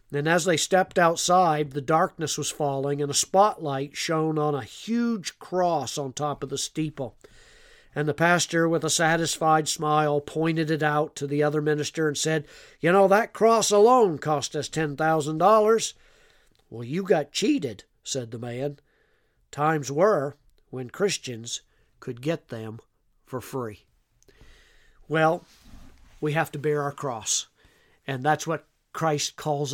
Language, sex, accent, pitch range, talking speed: English, male, American, 135-165 Hz, 150 wpm